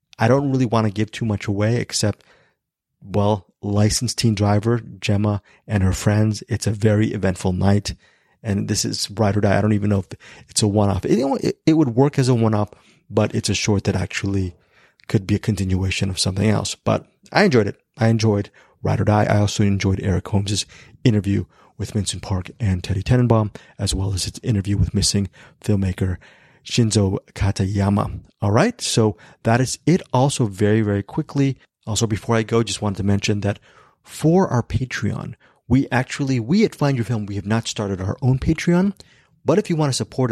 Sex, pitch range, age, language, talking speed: male, 100-120 Hz, 30-49, English, 195 wpm